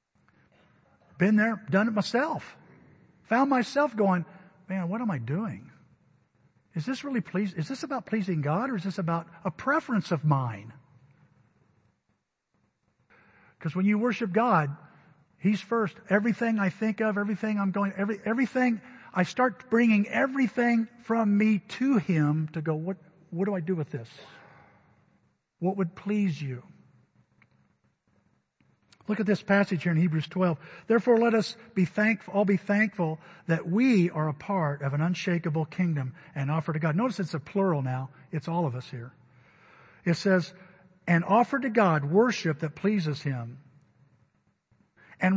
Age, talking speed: 50-69, 155 wpm